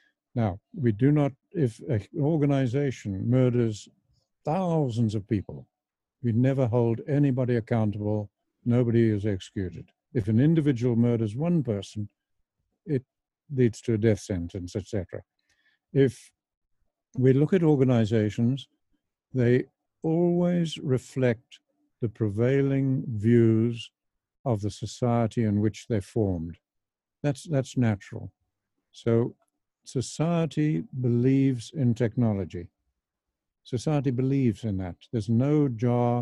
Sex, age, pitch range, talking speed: male, 60-79, 110-135 Hz, 110 wpm